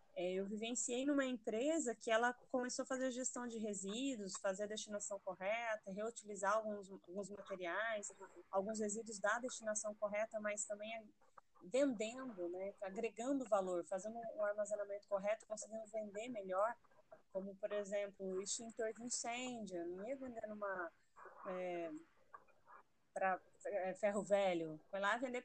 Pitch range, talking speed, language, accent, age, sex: 200-250 Hz, 135 wpm, Portuguese, Brazilian, 20-39, female